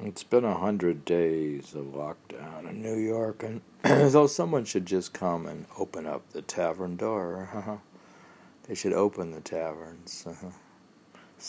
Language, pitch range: English, 85-110 Hz